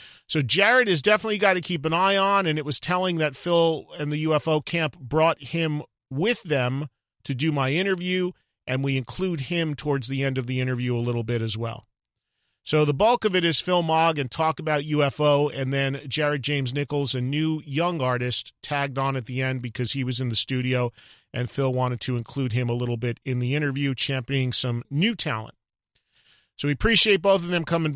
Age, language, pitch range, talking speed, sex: 40-59, English, 130-160 Hz, 210 wpm, male